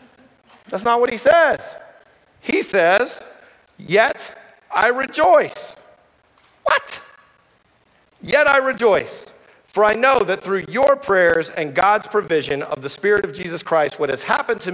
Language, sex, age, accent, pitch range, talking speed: English, male, 50-69, American, 180-225 Hz, 140 wpm